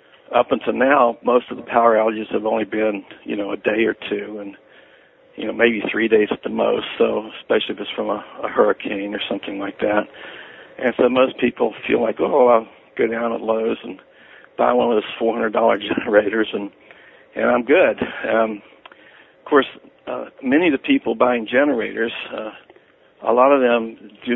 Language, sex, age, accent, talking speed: English, male, 60-79, American, 190 wpm